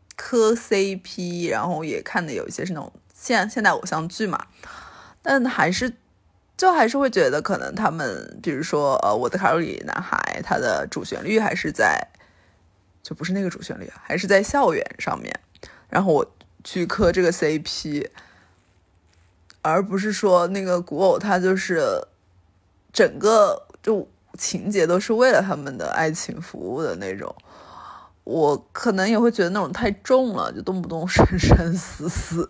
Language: Chinese